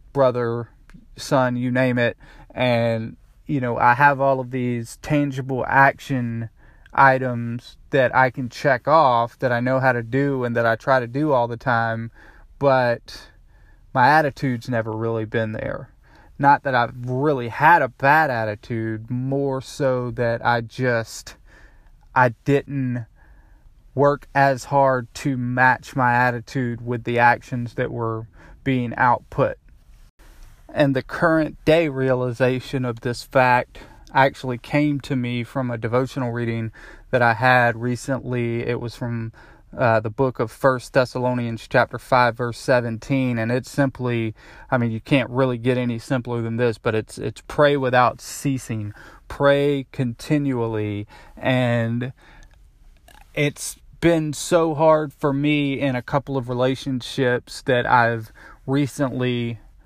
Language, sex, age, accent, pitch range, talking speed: English, male, 20-39, American, 115-135 Hz, 145 wpm